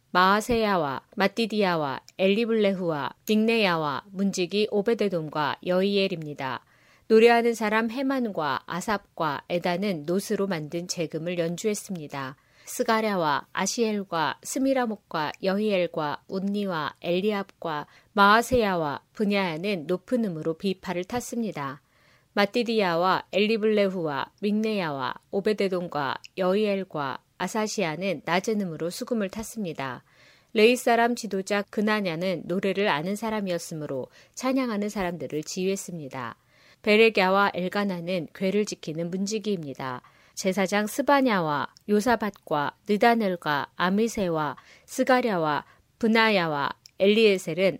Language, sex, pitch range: Korean, female, 170-215 Hz